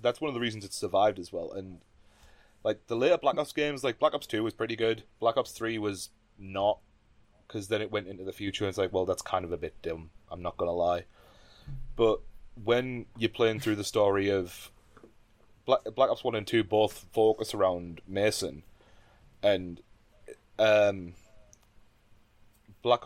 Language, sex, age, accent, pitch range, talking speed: English, male, 20-39, British, 95-115 Hz, 185 wpm